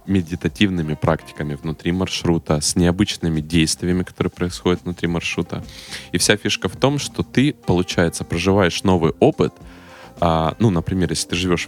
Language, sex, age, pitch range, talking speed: Russian, male, 20-39, 80-90 Hz, 145 wpm